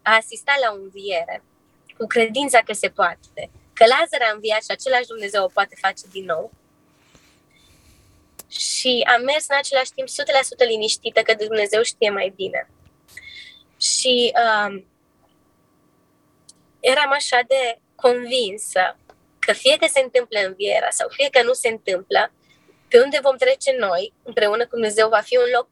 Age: 20-39